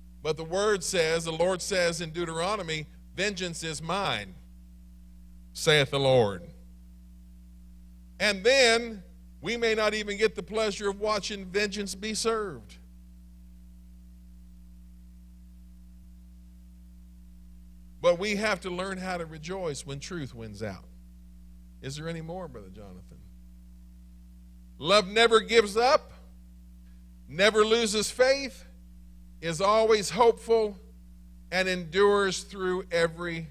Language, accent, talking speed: English, American, 110 wpm